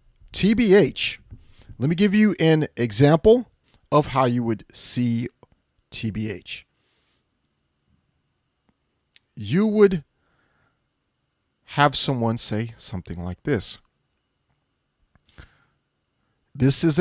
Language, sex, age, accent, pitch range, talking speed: English, male, 40-59, American, 105-160 Hz, 80 wpm